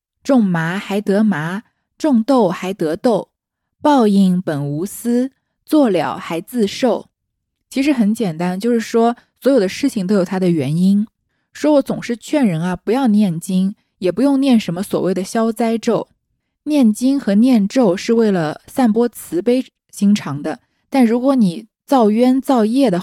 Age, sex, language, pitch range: 20-39, female, Chinese, 185-245 Hz